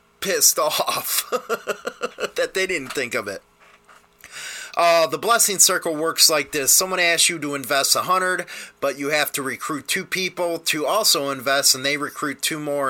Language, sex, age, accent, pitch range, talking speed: English, male, 30-49, American, 140-185 Hz, 170 wpm